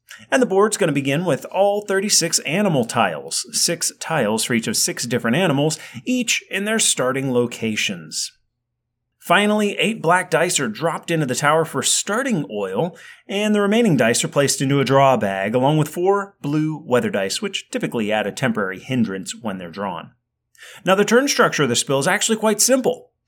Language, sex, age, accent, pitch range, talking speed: English, male, 30-49, American, 130-210 Hz, 185 wpm